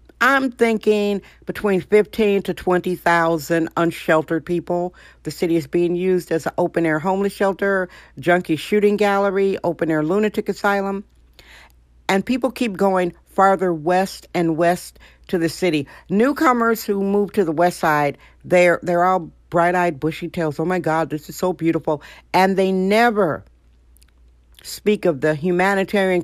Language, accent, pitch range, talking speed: English, American, 160-200 Hz, 145 wpm